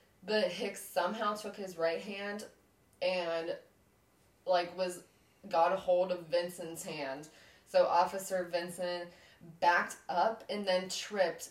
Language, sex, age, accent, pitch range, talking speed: English, female, 20-39, American, 170-190 Hz, 125 wpm